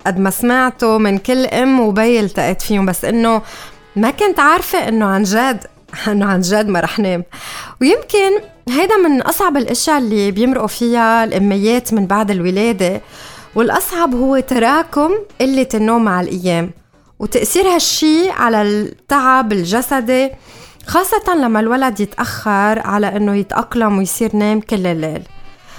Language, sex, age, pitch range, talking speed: Arabic, female, 20-39, 200-255 Hz, 135 wpm